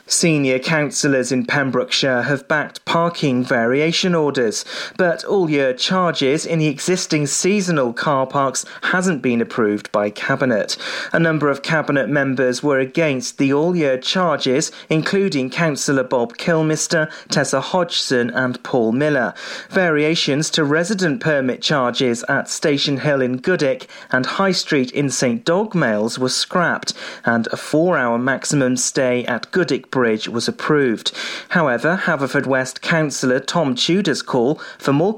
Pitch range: 130-170 Hz